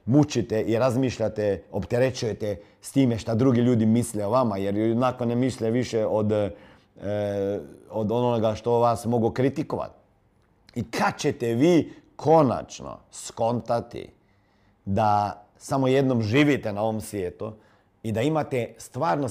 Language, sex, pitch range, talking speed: Croatian, male, 105-130 Hz, 130 wpm